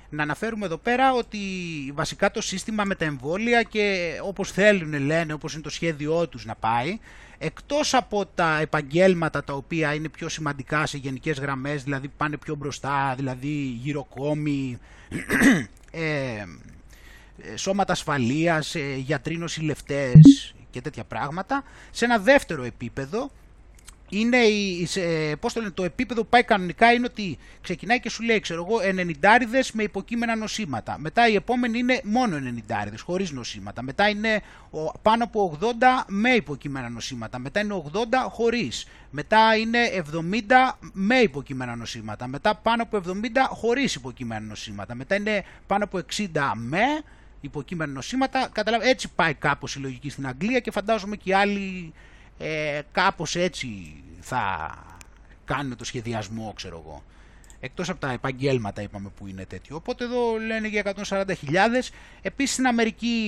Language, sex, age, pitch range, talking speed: Greek, male, 30-49, 140-215 Hz, 145 wpm